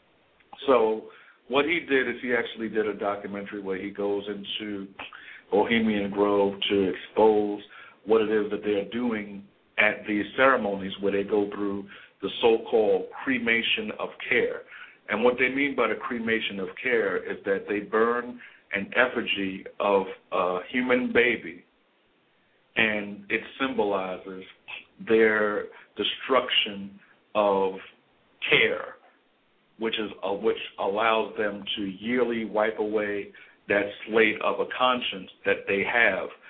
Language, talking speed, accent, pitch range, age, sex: English, 130 wpm, American, 100-120 Hz, 50-69, male